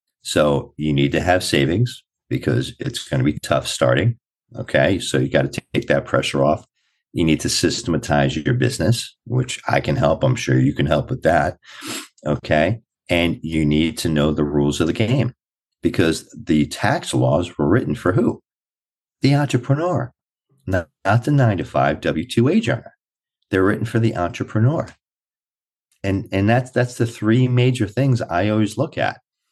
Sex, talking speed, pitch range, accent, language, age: male, 175 wpm, 85-120 Hz, American, English, 50-69